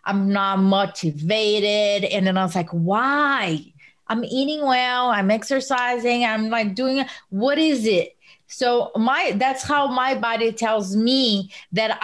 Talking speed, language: 145 wpm, English